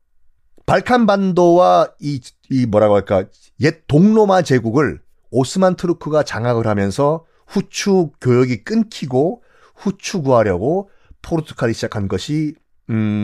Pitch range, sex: 130-200 Hz, male